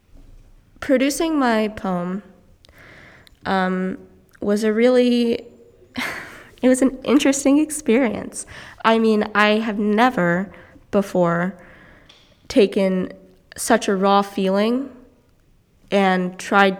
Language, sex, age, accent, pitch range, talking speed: English, female, 20-39, American, 180-225 Hz, 90 wpm